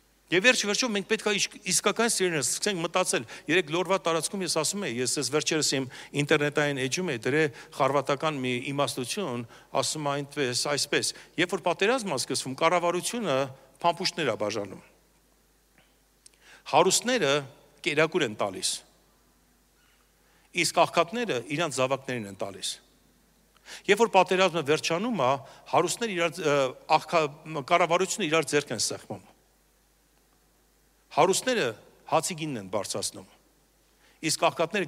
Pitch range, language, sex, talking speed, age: 135-185 Hz, English, male, 75 wpm, 60-79